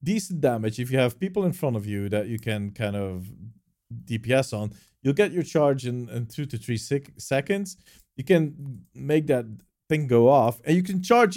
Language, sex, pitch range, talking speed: English, male, 105-140 Hz, 205 wpm